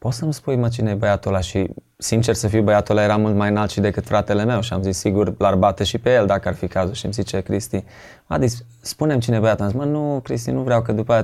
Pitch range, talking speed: 100-120 Hz, 290 wpm